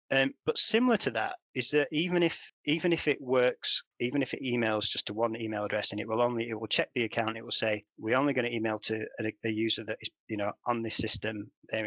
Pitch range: 110-135 Hz